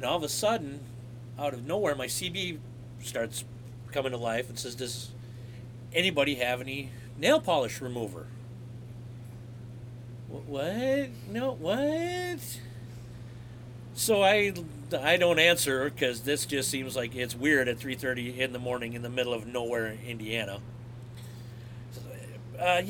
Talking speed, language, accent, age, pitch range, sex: 135 wpm, English, American, 40-59, 120-145 Hz, male